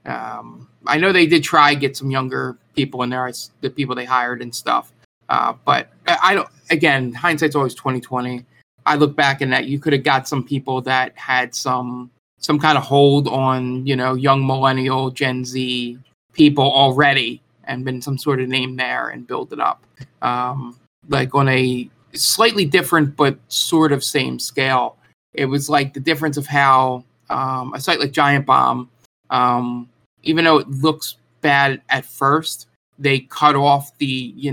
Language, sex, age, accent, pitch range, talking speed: English, male, 20-39, American, 125-145 Hz, 180 wpm